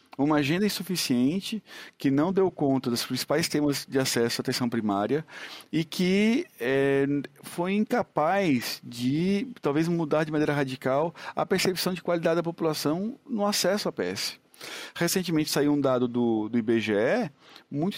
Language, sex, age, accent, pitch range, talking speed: Portuguese, male, 50-69, Brazilian, 125-180 Hz, 145 wpm